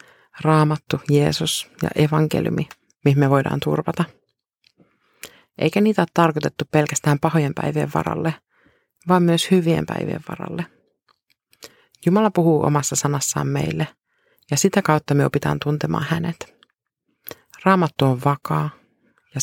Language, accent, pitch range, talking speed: Finnish, native, 145-170 Hz, 115 wpm